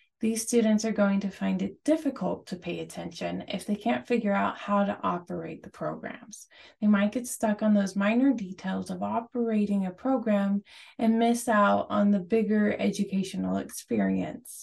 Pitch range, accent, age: 195-235 Hz, American, 20-39